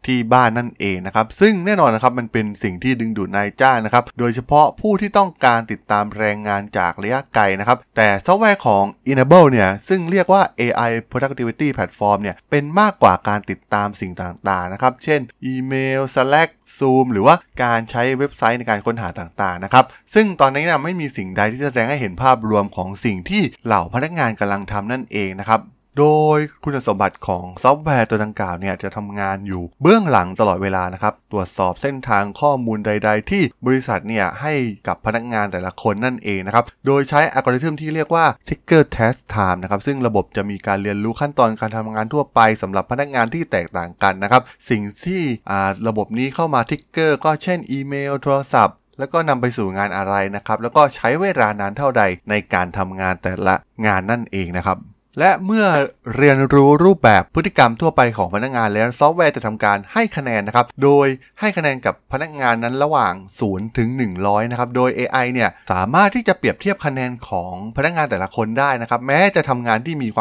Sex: male